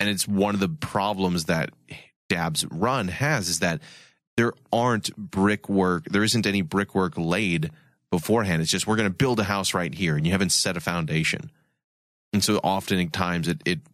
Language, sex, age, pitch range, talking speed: English, male, 30-49, 90-115 Hz, 190 wpm